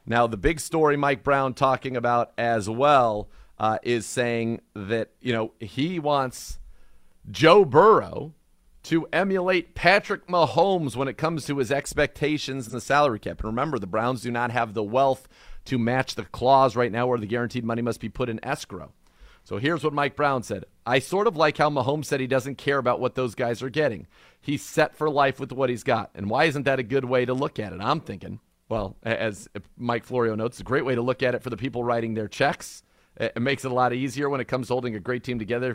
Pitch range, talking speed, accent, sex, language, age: 115-140 Hz, 225 wpm, American, male, English, 40-59